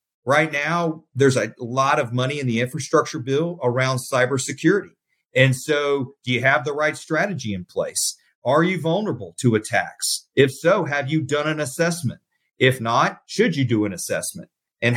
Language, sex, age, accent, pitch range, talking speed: English, male, 40-59, American, 120-160 Hz, 170 wpm